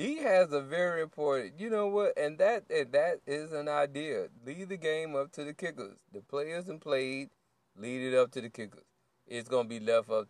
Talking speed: 215 wpm